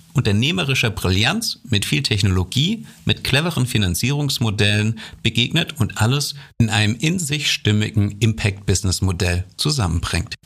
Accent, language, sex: German, German, male